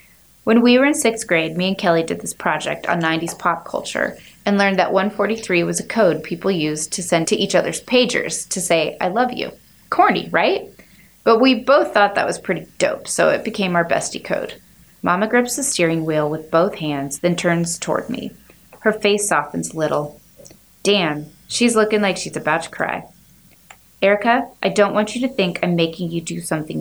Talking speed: 200 wpm